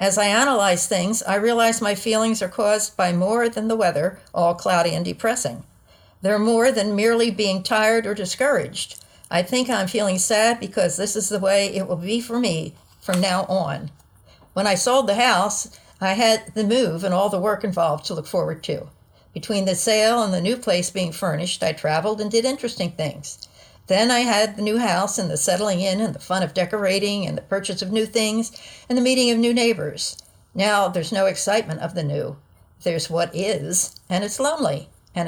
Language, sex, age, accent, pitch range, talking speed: English, female, 60-79, American, 180-225 Hz, 200 wpm